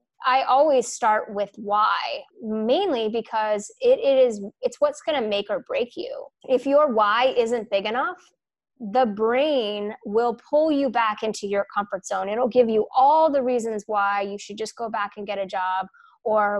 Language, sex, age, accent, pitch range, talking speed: English, female, 20-39, American, 210-265 Hz, 175 wpm